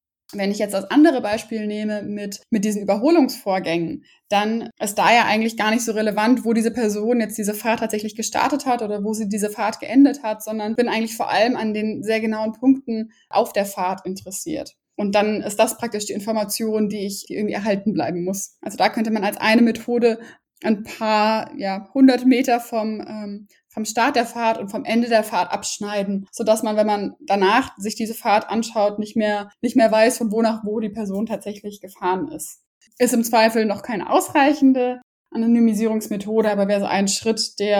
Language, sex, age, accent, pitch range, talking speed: German, female, 20-39, German, 205-235 Hz, 195 wpm